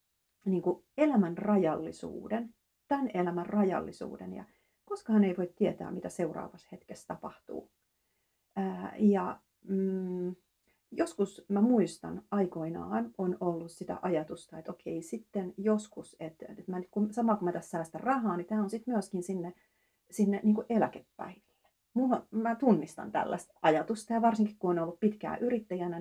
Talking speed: 130 wpm